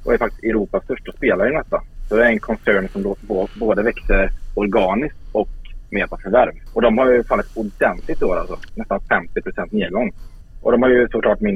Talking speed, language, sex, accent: 195 wpm, Swedish, male, Norwegian